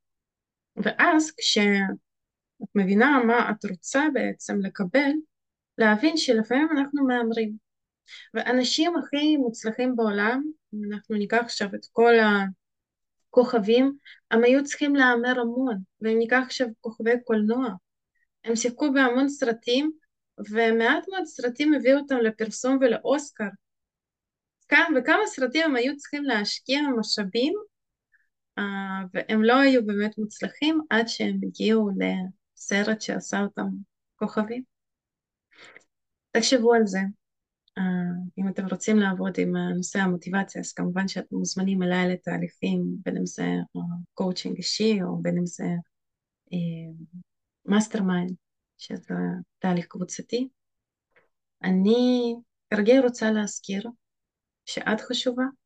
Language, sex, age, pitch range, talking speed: Hebrew, female, 20-39, 195-255 Hz, 110 wpm